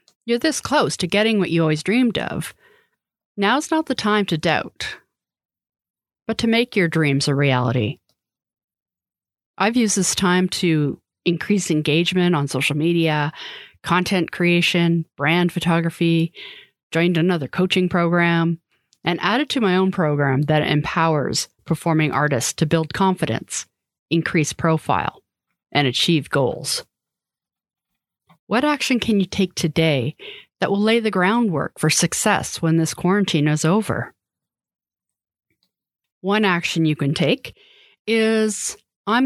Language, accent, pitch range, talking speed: English, American, 160-205 Hz, 130 wpm